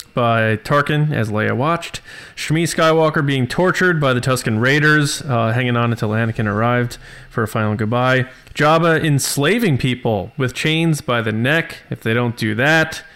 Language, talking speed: English, 165 wpm